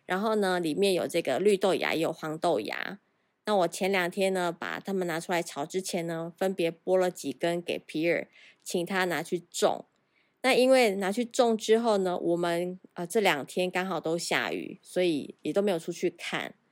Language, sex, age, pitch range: Chinese, female, 20-39, 170-210 Hz